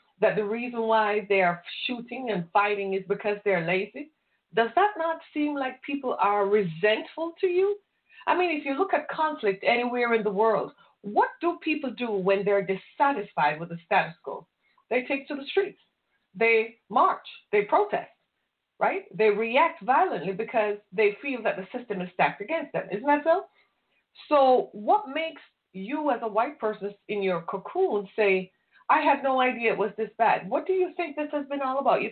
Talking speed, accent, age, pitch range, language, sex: 190 wpm, American, 40-59, 200-285 Hz, English, female